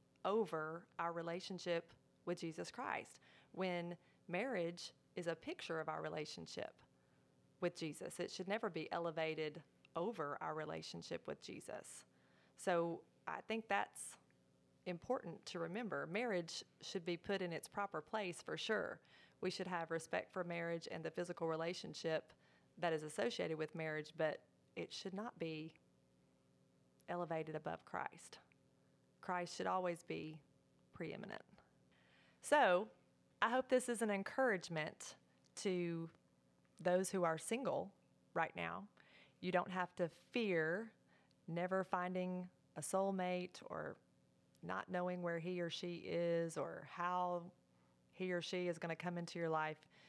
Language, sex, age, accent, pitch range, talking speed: English, female, 30-49, American, 155-180 Hz, 135 wpm